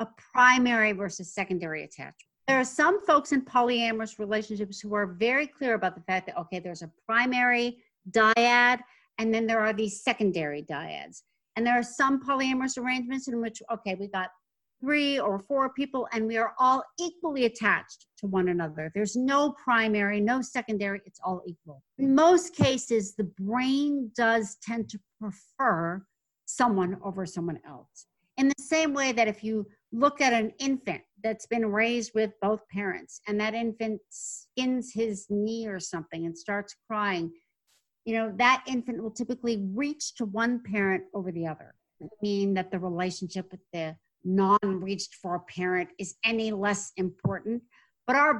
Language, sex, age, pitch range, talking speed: English, female, 50-69, 195-255 Hz, 165 wpm